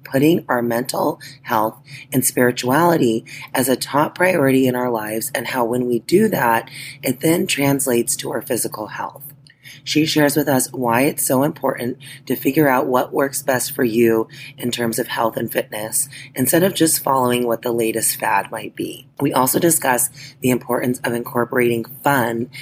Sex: female